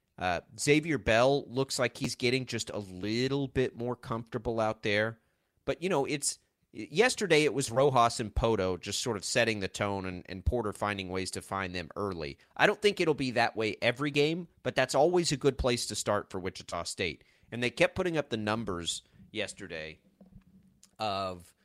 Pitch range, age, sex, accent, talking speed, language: 105-140 Hz, 30-49, male, American, 190 wpm, English